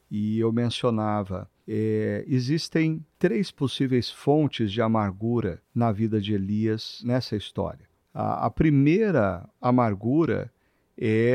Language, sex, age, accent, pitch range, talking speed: Portuguese, male, 50-69, Brazilian, 105-125 Hz, 105 wpm